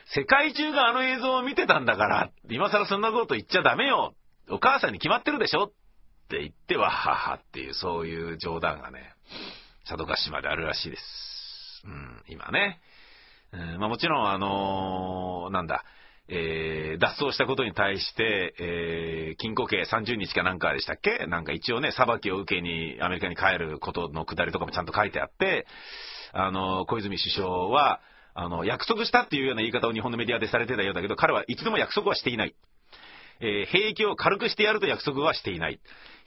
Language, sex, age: Japanese, male, 40-59